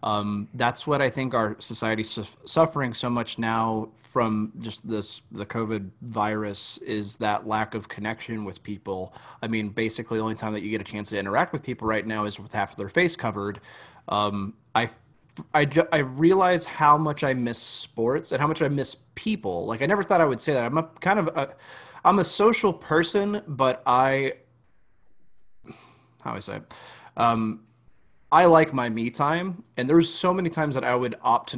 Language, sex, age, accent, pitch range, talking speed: English, male, 30-49, American, 110-145 Hz, 195 wpm